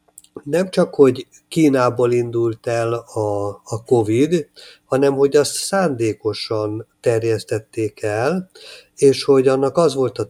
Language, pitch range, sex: Hungarian, 110-140 Hz, male